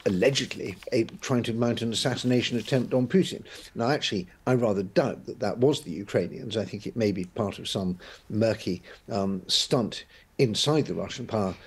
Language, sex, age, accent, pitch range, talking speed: English, male, 50-69, British, 100-125 Hz, 175 wpm